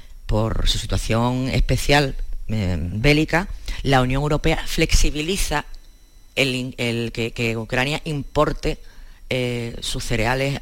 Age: 30-49